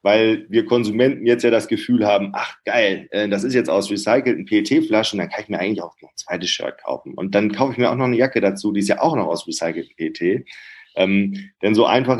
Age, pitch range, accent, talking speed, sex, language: 40-59, 95-120 Hz, German, 240 wpm, male, German